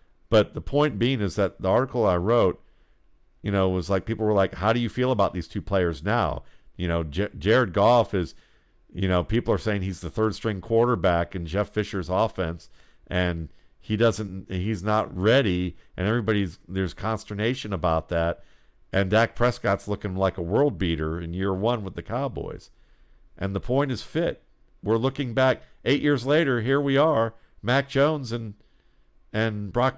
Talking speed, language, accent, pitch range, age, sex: 180 wpm, English, American, 95-120 Hz, 50-69, male